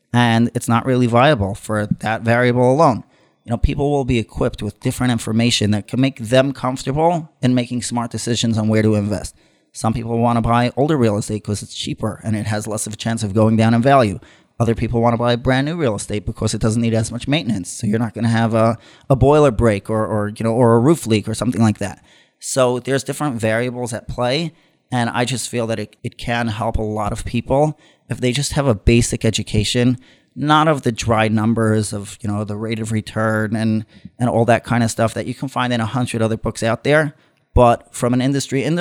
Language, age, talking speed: English, 30-49, 230 wpm